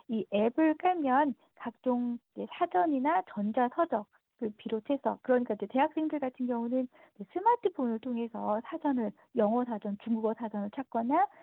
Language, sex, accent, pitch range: Korean, female, native, 225-310 Hz